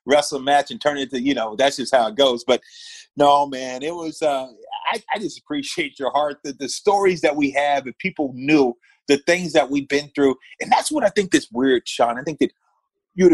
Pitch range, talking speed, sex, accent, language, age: 135-175 Hz, 240 wpm, male, American, English, 30-49